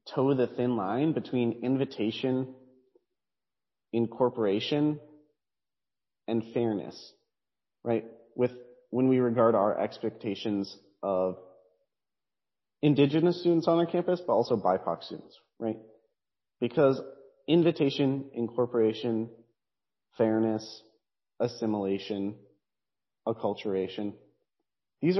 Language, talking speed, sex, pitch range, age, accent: English, 80 wpm, male, 110-140 Hz, 30-49, American